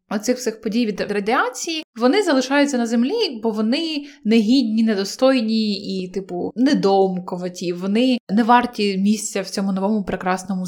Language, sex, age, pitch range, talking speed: Ukrainian, female, 20-39, 205-260 Hz, 135 wpm